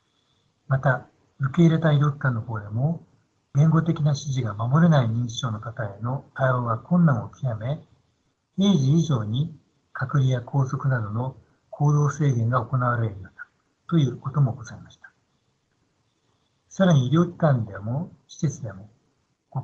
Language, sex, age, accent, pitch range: Japanese, male, 60-79, native, 120-150 Hz